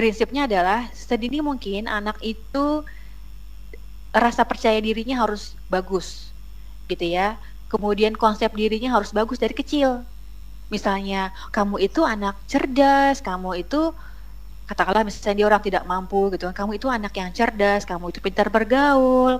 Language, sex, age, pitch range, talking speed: Indonesian, female, 30-49, 195-255 Hz, 135 wpm